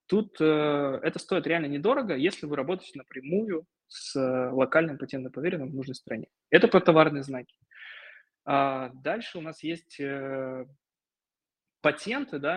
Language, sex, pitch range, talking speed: Russian, male, 130-165 Hz, 140 wpm